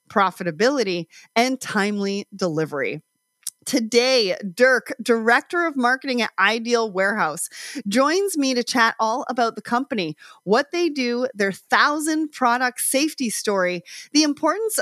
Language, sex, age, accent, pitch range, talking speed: English, female, 30-49, American, 200-285 Hz, 120 wpm